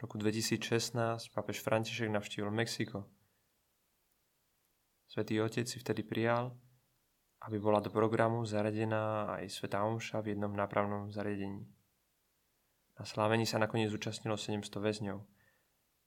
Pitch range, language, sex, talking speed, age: 105-120 Hz, Czech, male, 110 wpm, 20-39